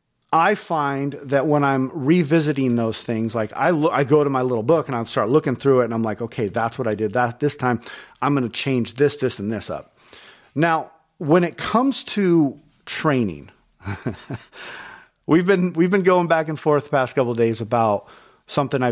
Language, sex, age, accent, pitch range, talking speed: English, male, 40-59, American, 115-150 Hz, 215 wpm